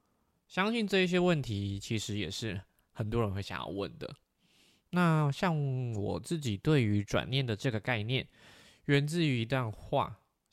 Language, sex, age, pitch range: Chinese, male, 20-39, 105-145 Hz